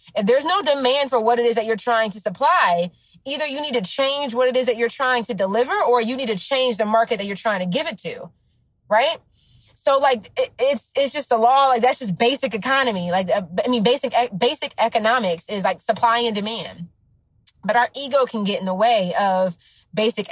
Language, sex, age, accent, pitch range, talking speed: English, female, 20-39, American, 200-255 Hz, 220 wpm